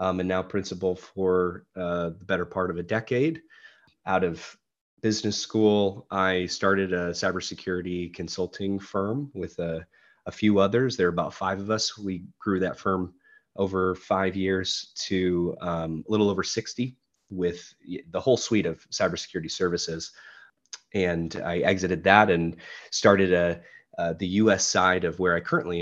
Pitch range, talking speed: 85-100 Hz, 160 wpm